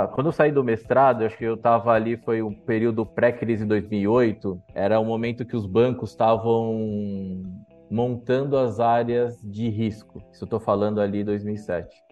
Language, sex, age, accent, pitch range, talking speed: Portuguese, male, 20-39, Brazilian, 100-120 Hz, 170 wpm